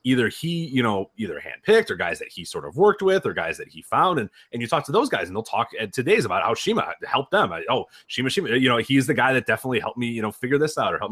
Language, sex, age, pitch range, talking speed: English, male, 30-49, 110-140 Hz, 300 wpm